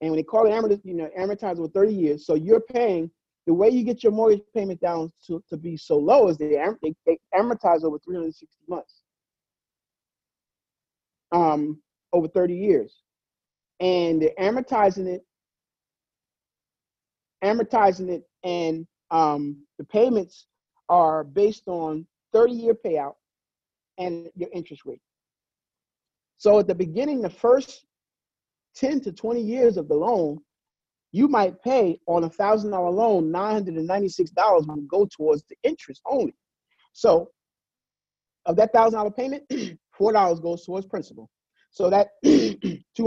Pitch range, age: 165-220 Hz, 40-59